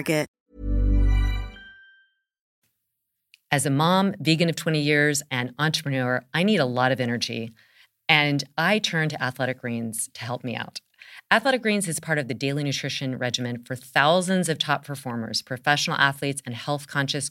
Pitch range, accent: 125-160 Hz, American